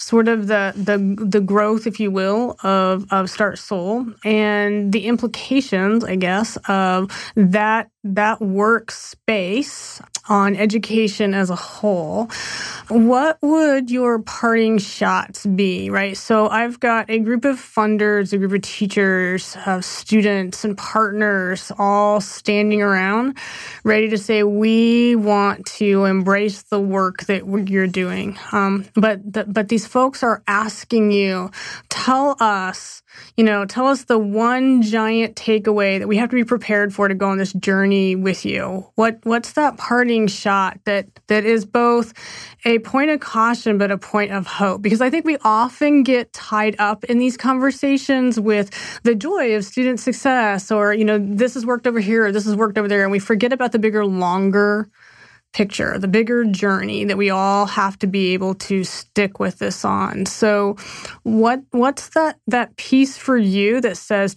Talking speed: 165 wpm